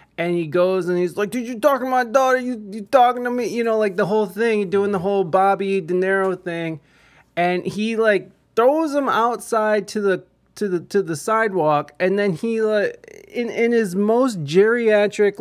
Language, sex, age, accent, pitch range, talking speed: English, male, 20-39, American, 165-215 Hz, 205 wpm